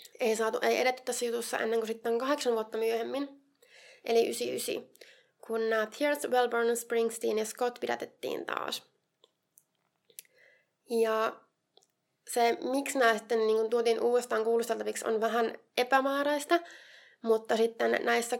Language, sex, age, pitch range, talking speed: Finnish, female, 20-39, 220-245 Hz, 125 wpm